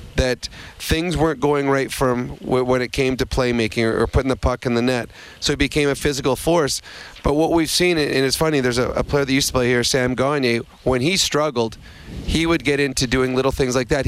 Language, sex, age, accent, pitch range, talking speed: English, male, 30-49, American, 125-145 Hz, 230 wpm